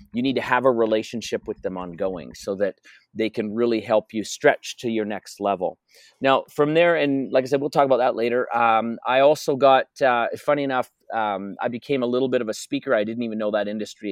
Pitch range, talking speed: 115-145 Hz, 235 wpm